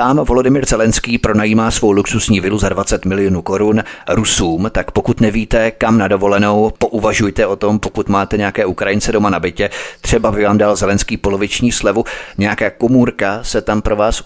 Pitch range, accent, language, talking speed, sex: 95-115 Hz, native, Czech, 175 wpm, male